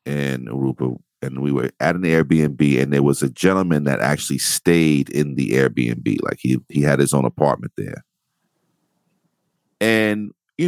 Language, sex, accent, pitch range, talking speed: English, male, American, 80-130 Hz, 165 wpm